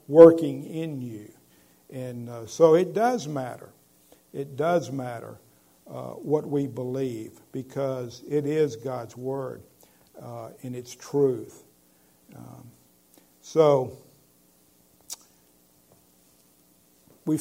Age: 50-69